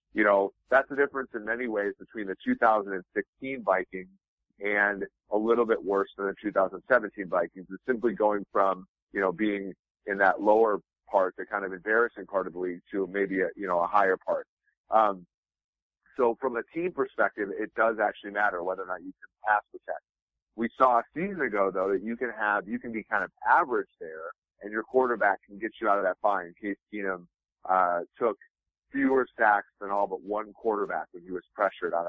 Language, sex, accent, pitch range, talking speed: English, male, American, 95-125 Hz, 210 wpm